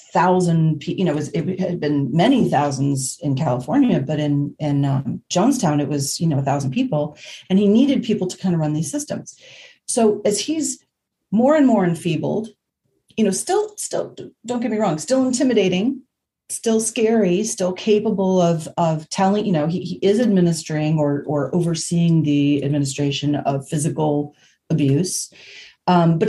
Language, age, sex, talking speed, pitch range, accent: English, 40-59, female, 165 wpm, 150-200 Hz, American